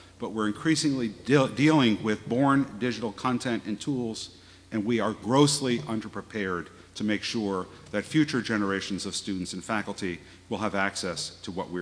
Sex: male